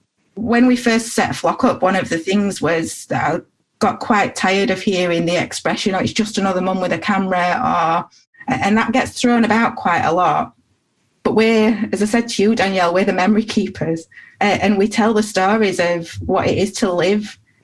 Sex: female